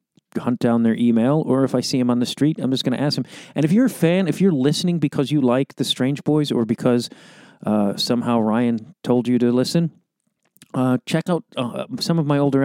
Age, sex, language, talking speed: 40-59, male, English, 235 wpm